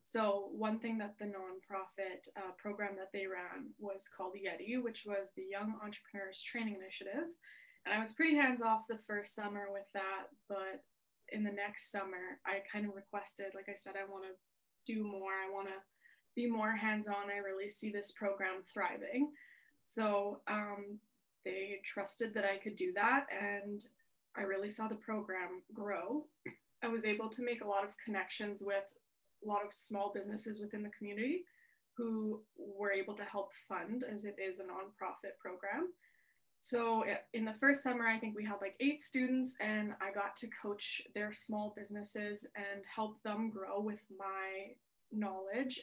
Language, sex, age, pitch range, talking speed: English, female, 10-29, 195-220 Hz, 175 wpm